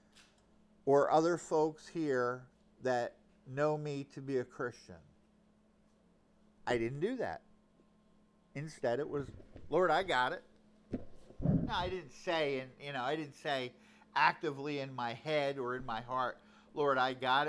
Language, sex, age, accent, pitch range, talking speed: English, male, 50-69, American, 185-225 Hz, 150 wpm